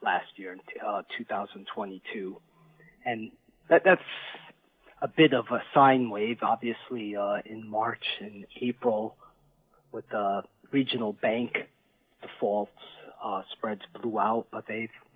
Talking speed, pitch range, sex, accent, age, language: 135 wpm, 115-140 Hz, male, American, 40-59, English